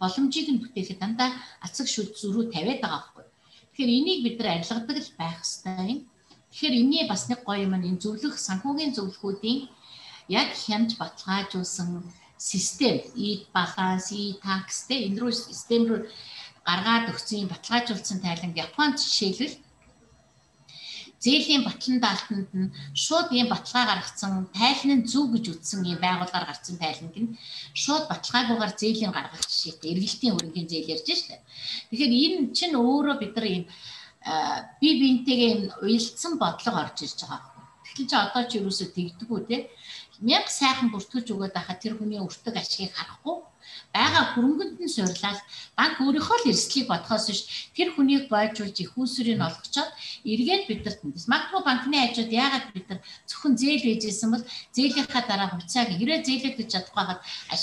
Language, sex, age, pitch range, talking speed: Russian, female, 60-79, 190-260 Hz, 90 wpm